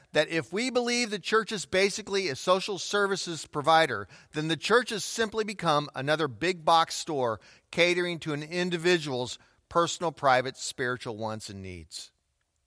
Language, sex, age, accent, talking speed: English, male, 40-59, American, 150 wpm